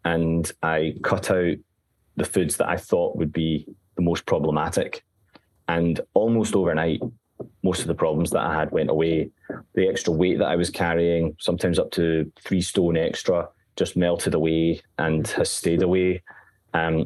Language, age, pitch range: English, 20-39, 85-95 Hz